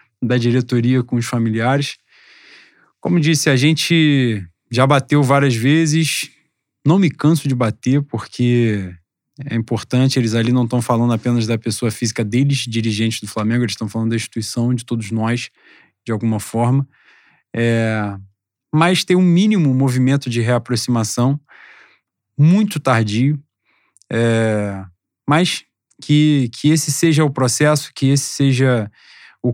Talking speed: 130 wpm